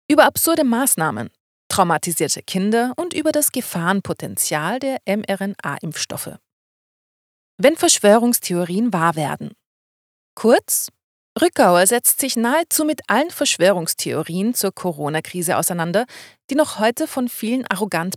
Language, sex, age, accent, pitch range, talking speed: German, female, 30-49, German, 170-240 Hz, 105 wpm